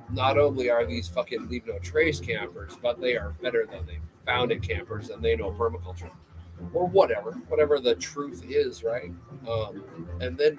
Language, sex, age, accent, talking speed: English, male, 40-59, American, 180 wpm